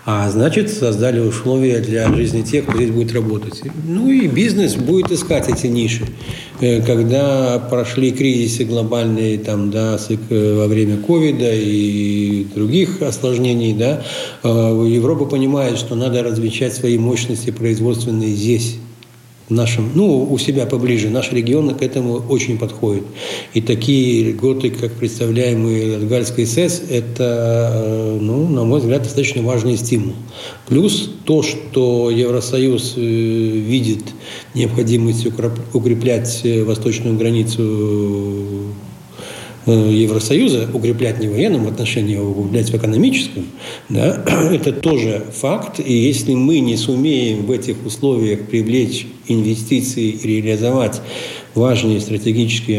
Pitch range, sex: 110-130 Hz, male